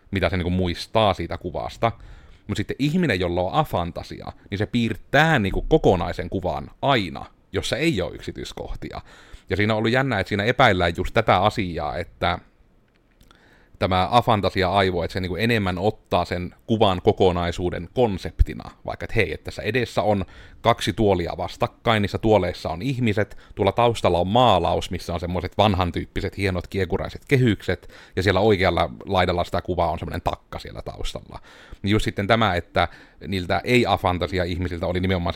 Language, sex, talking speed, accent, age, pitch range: Finnish, male, 155 wpm, native, 30-49, 90-105 Hz